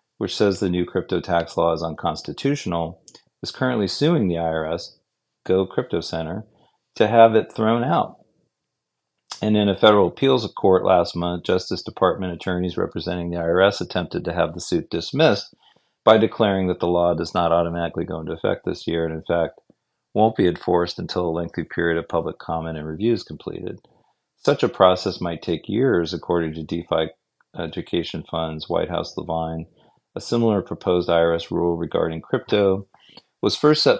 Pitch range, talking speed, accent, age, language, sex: 85-95 Hz, 170 wpm, American, 40-59, English, male